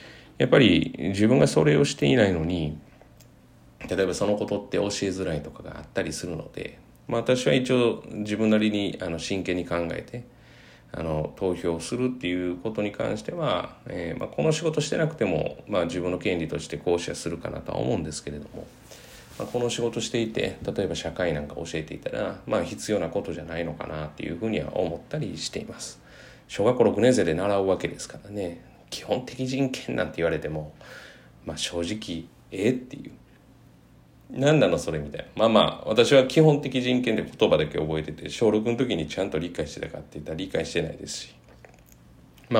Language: Japanese